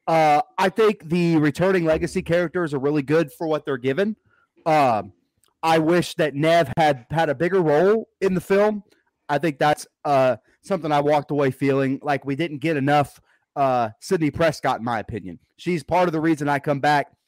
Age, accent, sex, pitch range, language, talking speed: 30-49, American, male, 140-175 Hz, English, 190 wpm